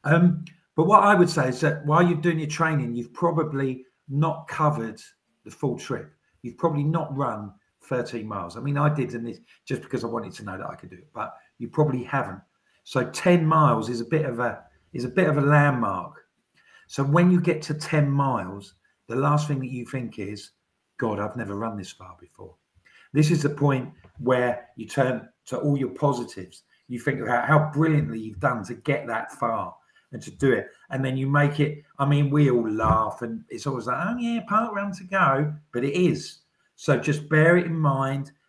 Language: English